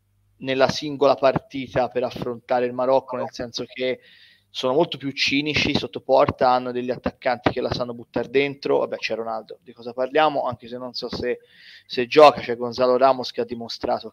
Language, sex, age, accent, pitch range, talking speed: Italian, male, 30-49, native, 120-135 Hz, 185 wpm